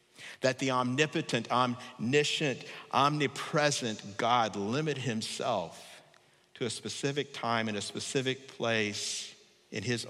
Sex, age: male, 50-69